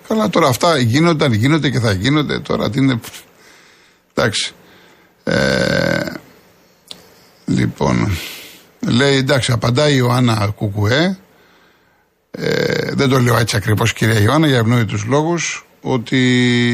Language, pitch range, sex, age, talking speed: Greek, 115-140 Hz, male, 50-69, 110 wpm